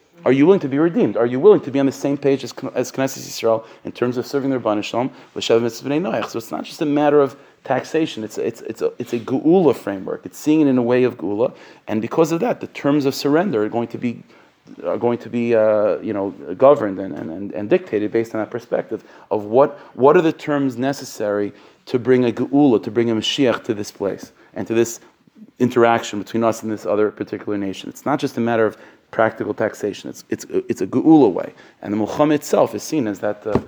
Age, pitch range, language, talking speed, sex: 40-59, 115-145 Hz, English, 230 wpm, male